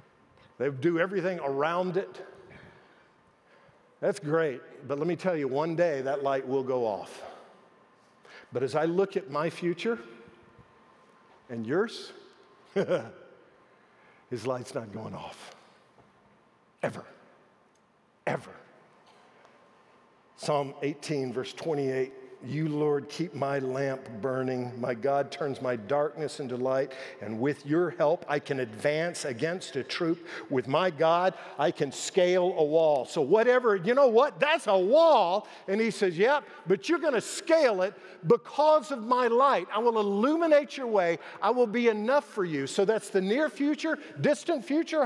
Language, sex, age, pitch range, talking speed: English, male, 50-69, 145-225 Hz, 145 wpm